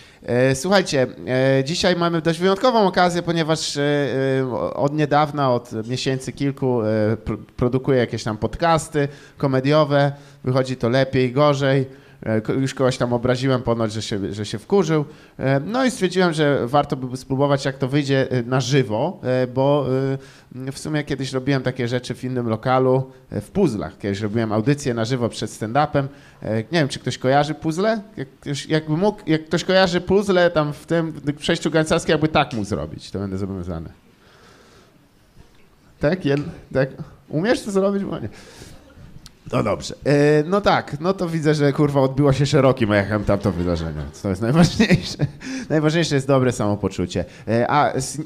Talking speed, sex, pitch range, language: 150 wpm, male, 115-150 Hz, Polish